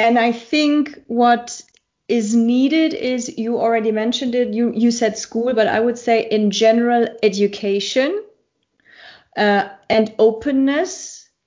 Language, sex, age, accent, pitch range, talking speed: English, female, 30-49, German, 225-270 Hz, 130 wpm